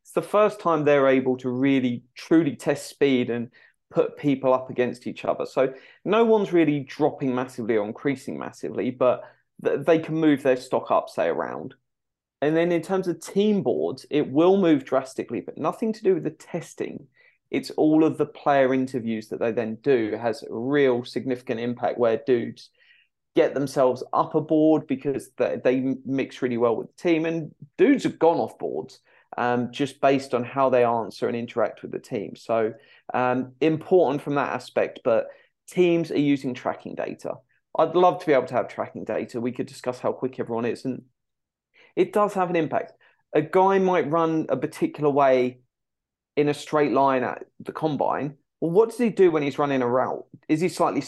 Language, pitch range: English, 125-165 Hz